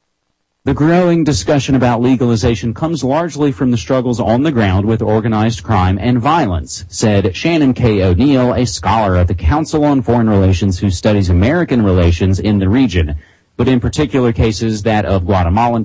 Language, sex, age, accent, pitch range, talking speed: English, male, 40-59, American, 90-120 Hz, 165 wpm